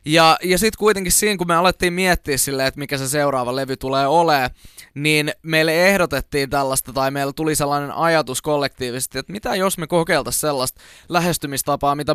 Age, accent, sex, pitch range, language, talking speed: 20-39, native, male, 135-155 Hz, Finnish, 175 wpm